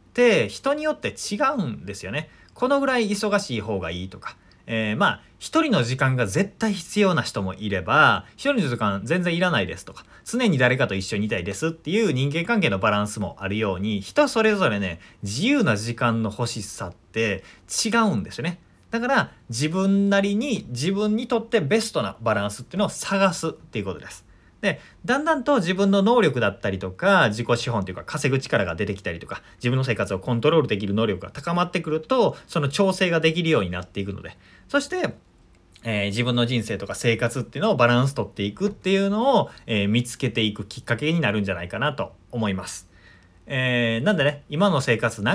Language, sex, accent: Japanese, male, native